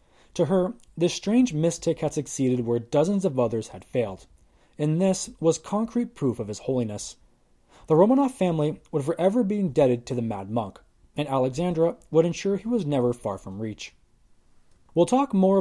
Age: 20-39